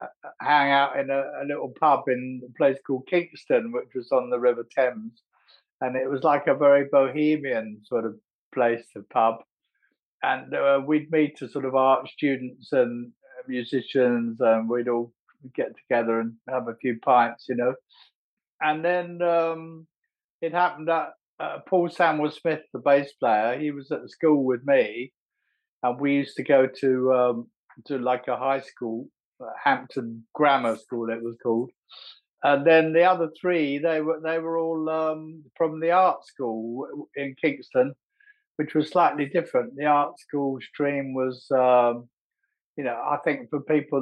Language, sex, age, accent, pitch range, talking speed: English, male, 50-69, British, 125-160 Hz, 170 wpm